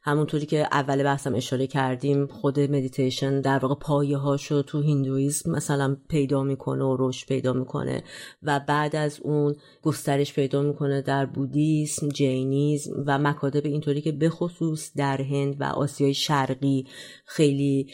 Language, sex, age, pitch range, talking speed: Persian, female, 30-49, 135-150 Hz, 140 wpm